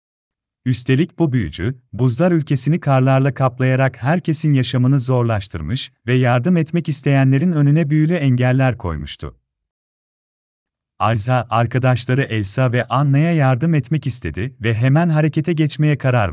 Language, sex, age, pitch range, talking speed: Turkish, male, 40-59, 90-145 Hz, 115 wpm